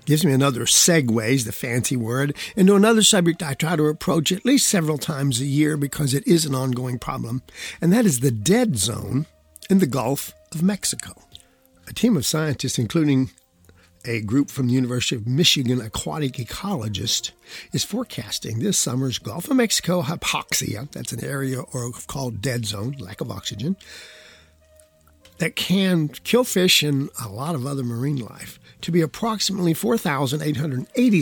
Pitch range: 125-170 Hz